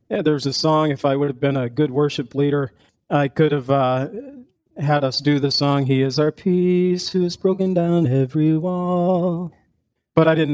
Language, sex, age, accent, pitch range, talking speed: English, male, 40-59, American, 140-165 Hz, 200 wpm